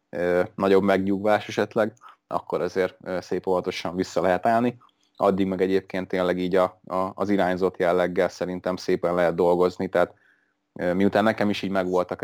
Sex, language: male, Hungarian